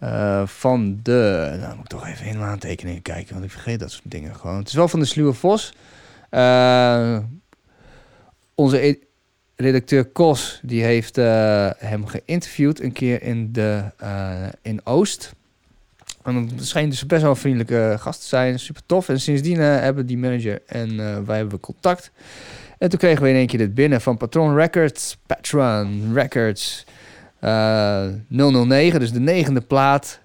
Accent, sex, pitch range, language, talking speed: Dutch, male, 105-135 Hz, Dutch, 170 wpm